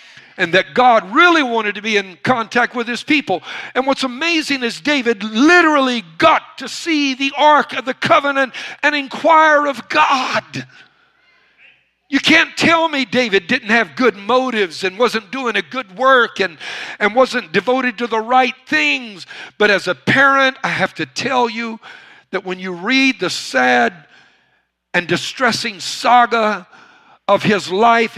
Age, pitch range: 60-79, 190-280 Hz